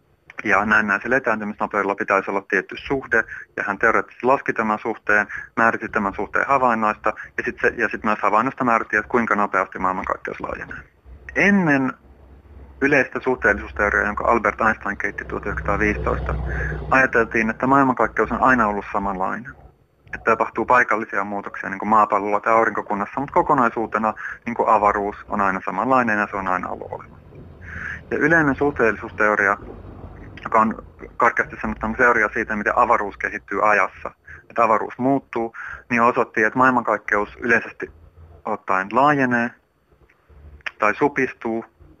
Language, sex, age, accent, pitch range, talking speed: Finnish, male, 30-49, native, 100-120 Hz, 125 wpm